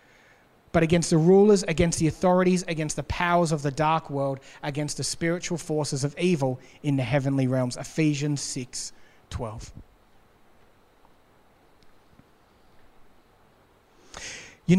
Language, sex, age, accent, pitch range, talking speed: English, male, 30-49, Australian, 135-190 Hz, 115 wpm